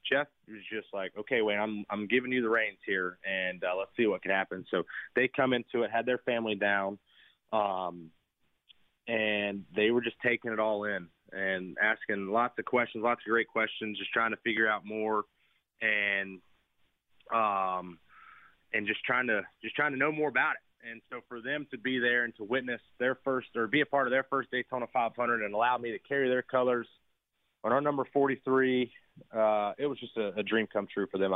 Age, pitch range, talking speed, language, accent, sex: 30-49, 100-120 Hz, 210 wpm, English, American, male